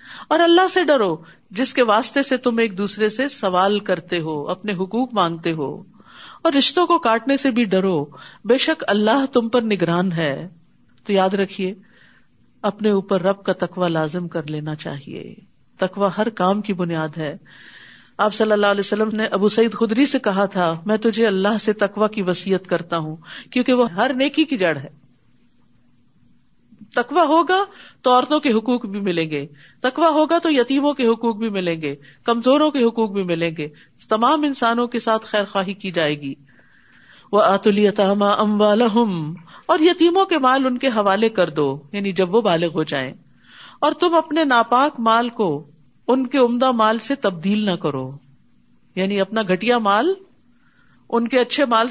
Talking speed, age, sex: 175 wpm, 50-69, female